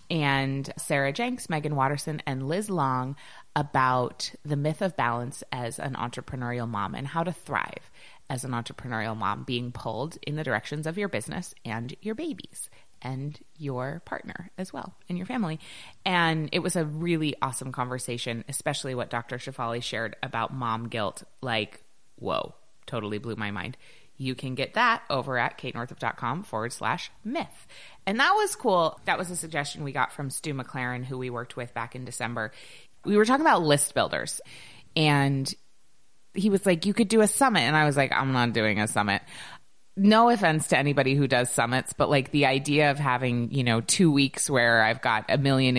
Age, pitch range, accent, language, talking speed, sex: 20-39, 120-160 Hz, American, English, 185 wpm, female